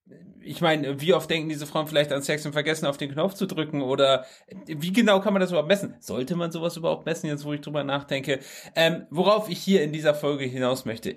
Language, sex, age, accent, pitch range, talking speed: German, male, 30-49, German, 135-160 Hz, 235 wpm